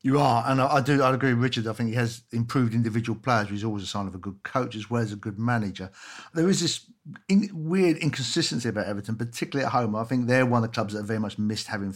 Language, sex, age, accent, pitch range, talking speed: English, male, 50-69, British, 110-135 Hz, 275 wpm